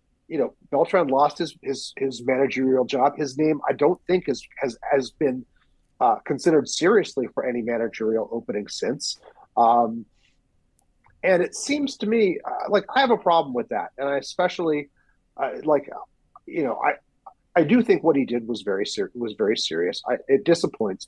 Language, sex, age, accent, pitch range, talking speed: English, male, 30-49, American, 130-170 Hz, 180 wpm